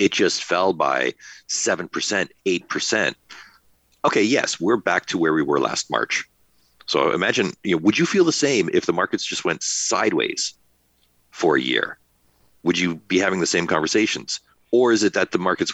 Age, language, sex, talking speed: 40-59, English, male, 180 wpm